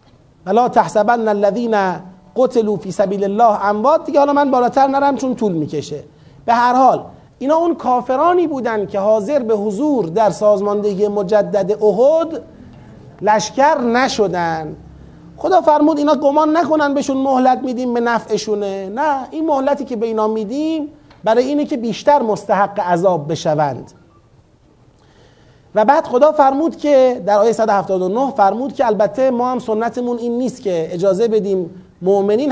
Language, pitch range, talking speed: Persian, 200-265 Hz, 140 wpm